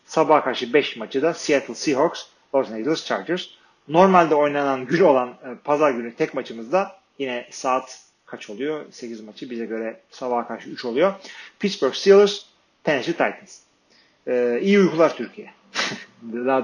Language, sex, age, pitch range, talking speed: Turkish, male, 40-59, 130-180 Hz, 145 wpm